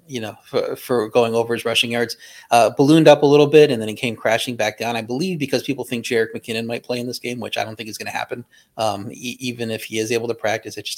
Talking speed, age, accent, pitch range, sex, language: 280 wpm, 30-49, American, 110-130 Hz, male, English